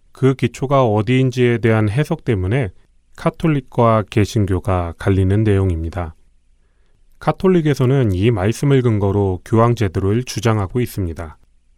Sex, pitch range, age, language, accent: male, 95-125 Hz, 30-49, Korean, native